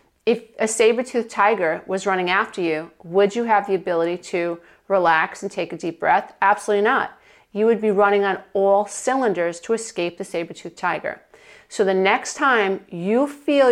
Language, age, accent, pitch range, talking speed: English, 40-59, American, 190-230 Hz, 185 wpm